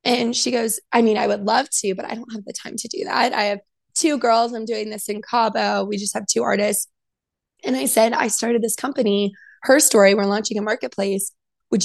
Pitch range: 200-235 Hz